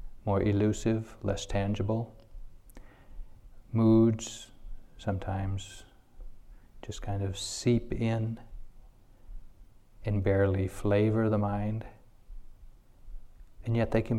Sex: male